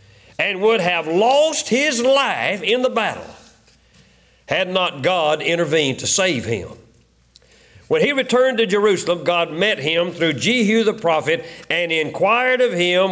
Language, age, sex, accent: English, 50-69, male, American